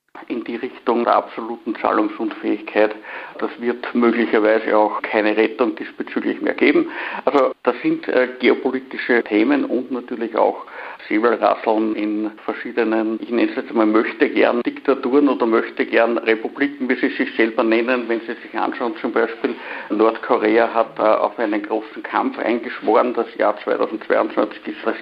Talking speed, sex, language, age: 150 wpm, male, German, 60-79